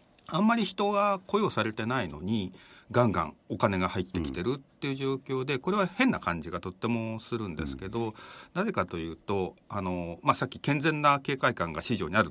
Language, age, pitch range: Japanese, 40-59, 95-145 Hz